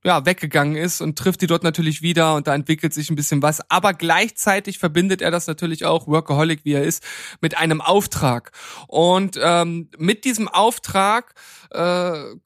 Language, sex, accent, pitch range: German, male, German, 155-180 Hz